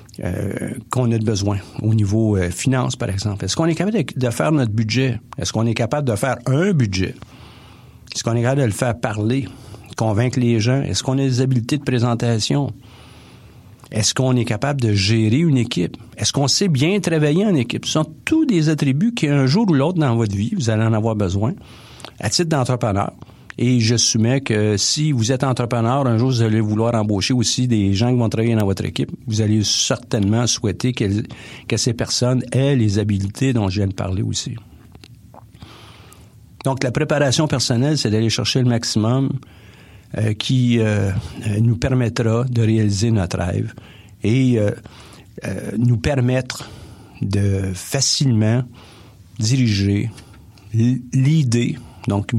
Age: 50-69